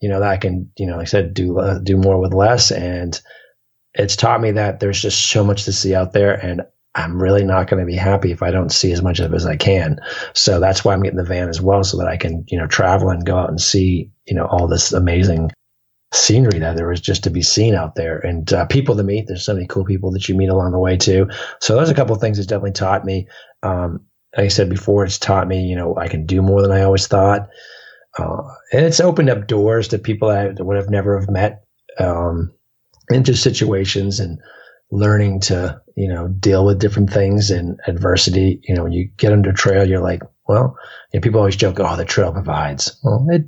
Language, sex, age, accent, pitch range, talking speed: English, male, 30-49, American, 90-105 Hz, 245 wpm